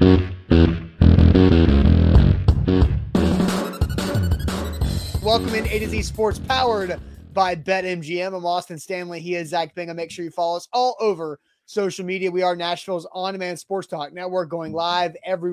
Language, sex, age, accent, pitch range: English, male, 30-49, American, 170-200 Hz